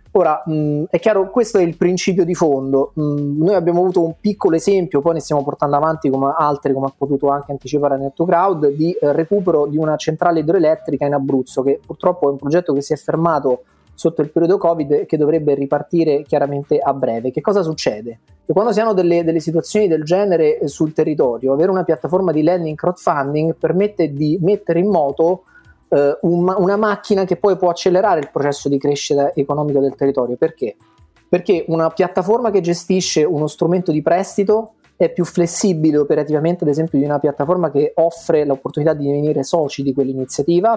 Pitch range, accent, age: 145-180 Hz, native, 30-49